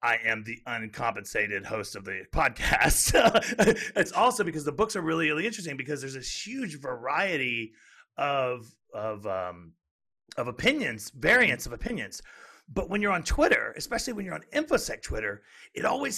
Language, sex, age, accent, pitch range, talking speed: English, male, 40-59, American, 135-190 Hz, 175 wpm